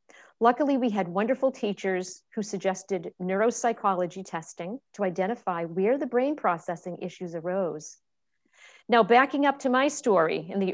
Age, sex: 50-69, female